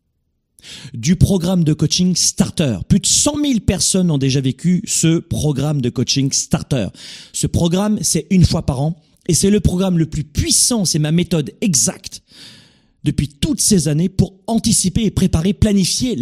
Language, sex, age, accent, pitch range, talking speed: French, male, 40-59, French, 145-205 Hz, 165 wpm